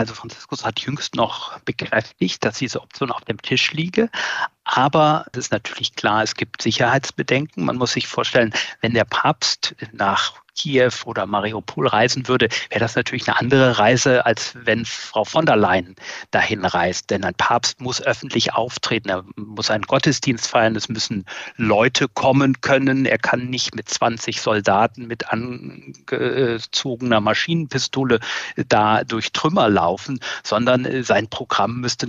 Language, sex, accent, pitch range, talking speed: German, male, German, 115-135 Hz, 150 wpm